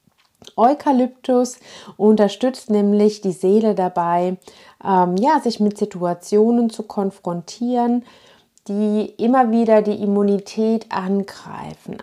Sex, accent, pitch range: female, German, 190-235 Hz